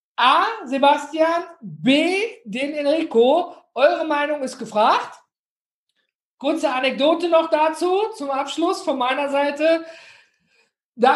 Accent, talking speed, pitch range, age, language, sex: German, 100 wpm, 220-275 Hz, 50-69, German, male